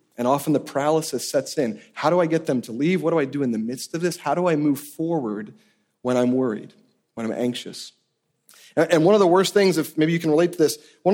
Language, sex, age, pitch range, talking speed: English, male, 30-49, 155-210 Hz, 255 wpm